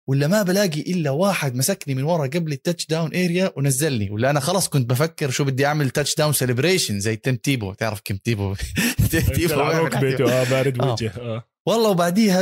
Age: 20-39